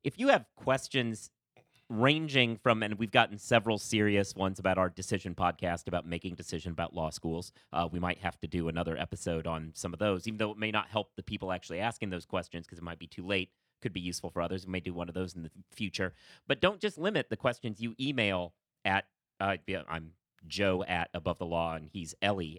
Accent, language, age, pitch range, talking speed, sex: American, English, 30-49, 90-115 Hz, 225 wpm, male